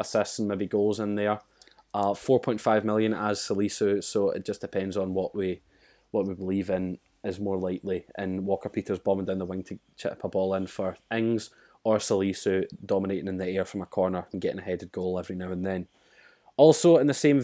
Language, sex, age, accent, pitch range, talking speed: English, male, 20-39, British, 95-115 Hz, 205 wpm